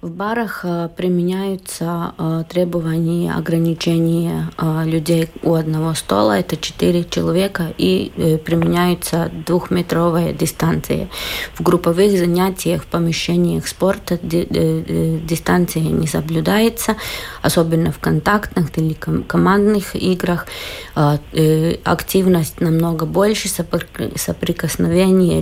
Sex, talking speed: female, 85 wpm